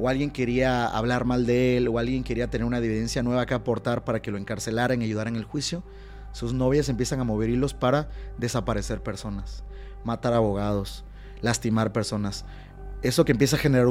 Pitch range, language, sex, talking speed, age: 115-145 Hz, Spanish, male, 185 wpm, 30-49